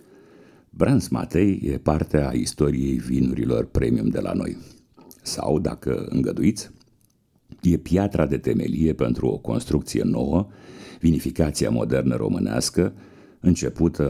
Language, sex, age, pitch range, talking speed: Romanian, male, 60-79, 70-90 Hz, 110 wpm